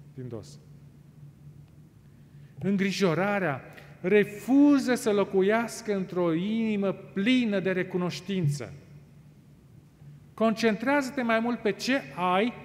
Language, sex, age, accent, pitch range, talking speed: Romanian, male, 40-59, native, 150-230 Hz, 80 wpm